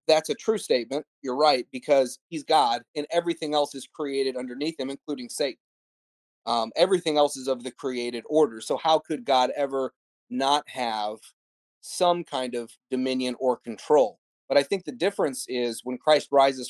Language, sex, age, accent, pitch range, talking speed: English, male, 30-49, American, 125-165 Hz, 175 wpm